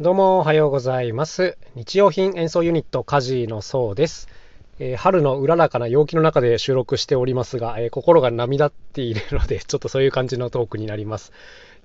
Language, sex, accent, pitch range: Japanese, male, native, 115-165 Hz